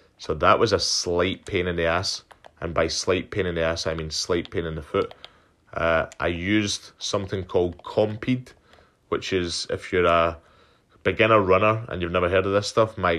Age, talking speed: 20-39, 200 wpm